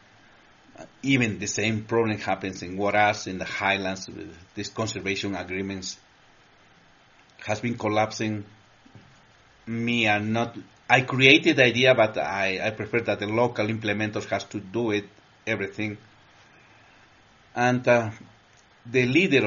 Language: English